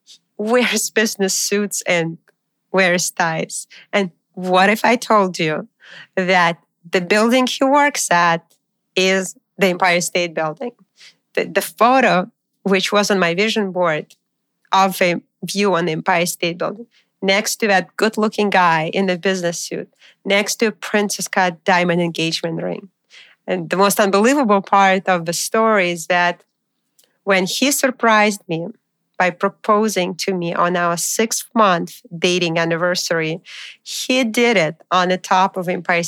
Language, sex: English, female